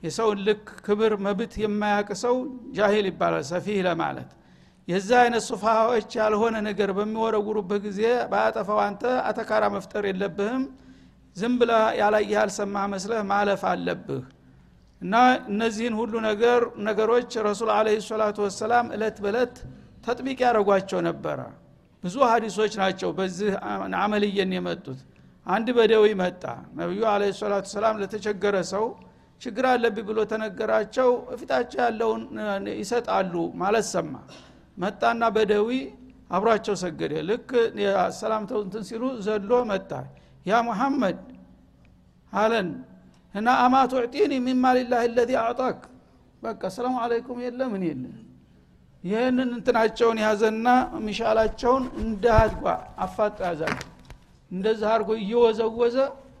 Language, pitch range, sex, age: Amharic, 200-235 Hz, male, 60-79